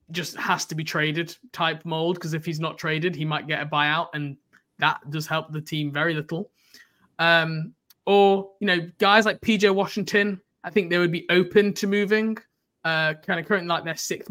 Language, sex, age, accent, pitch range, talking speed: English, male, 20-39, British, 155-200 Hz, 200 wpm